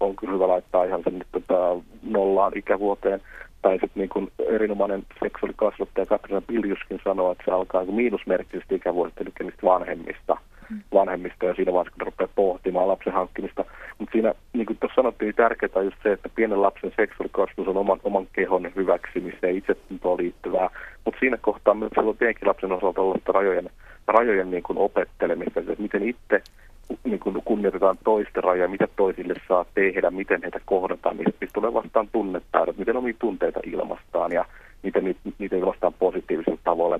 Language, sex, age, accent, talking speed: Finnish, male, 40-59, native, 155 wpm